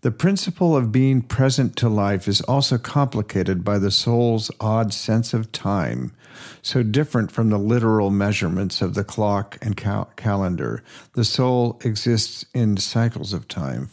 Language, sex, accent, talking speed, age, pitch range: English, male, American, 150 wpm, 50-69, 100-120 Hz